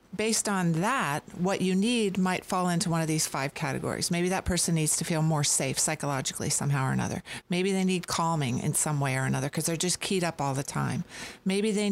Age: 50-69